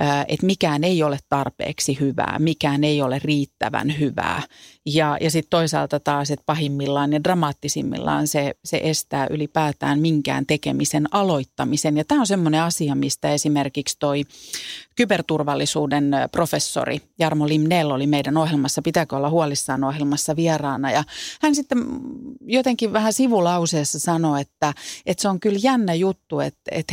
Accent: native